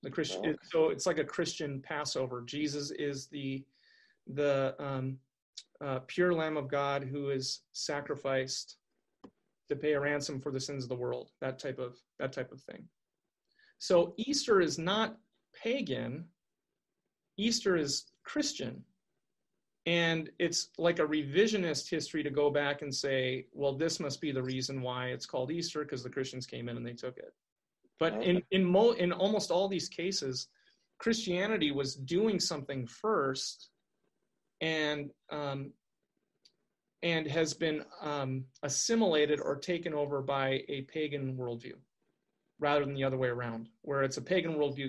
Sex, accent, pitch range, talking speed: male, American, 135-175 Hz, 155 wpm